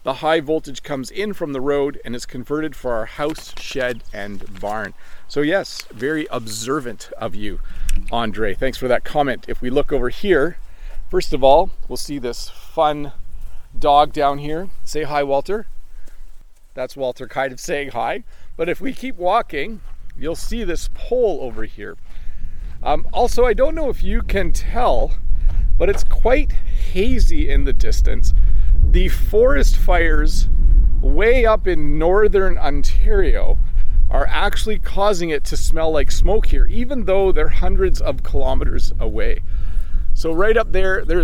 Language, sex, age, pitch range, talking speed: English, male, 40-59, 125-190 Hz, 155 wpm